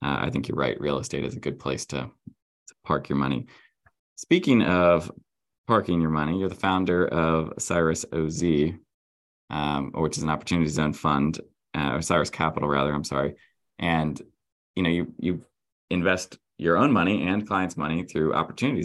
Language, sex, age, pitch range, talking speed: English, male, 20-39, 75-90 Hz, 175 wpm